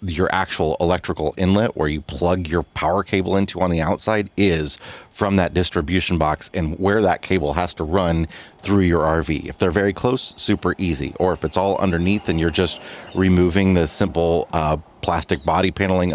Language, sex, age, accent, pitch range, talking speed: English, male, 30-49, American, 85-100 Hz, 185 wpm